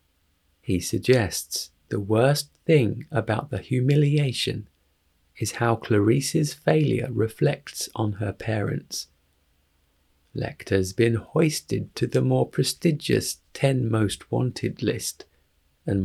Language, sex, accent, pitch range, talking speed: English, male, British, 75-120 Hz, 105 wpm